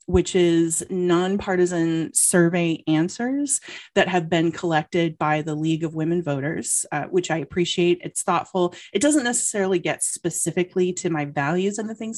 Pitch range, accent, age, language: 160-185 Hz, American, 30-49, English